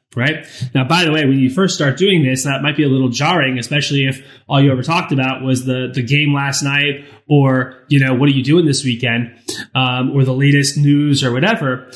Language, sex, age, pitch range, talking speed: English, male, 20-39, 130-165 Hz, 230 wpm